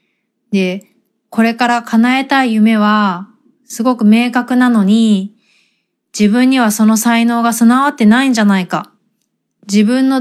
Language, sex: Japanese, female